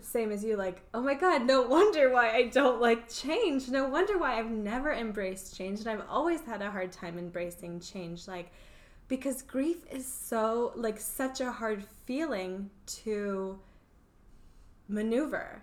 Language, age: English, 10-29